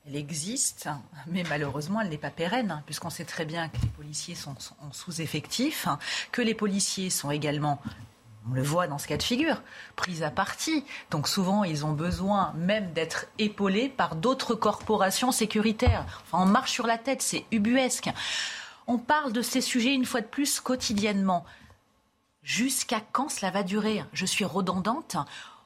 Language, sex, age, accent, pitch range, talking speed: French, female, 30-49, French, 195-265 Hz, 170 wpm